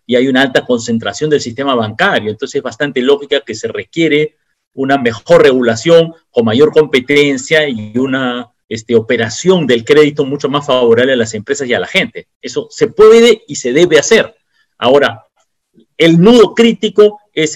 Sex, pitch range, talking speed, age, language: male, 130-180 Hz, 165 wpm, 40-59, Spanish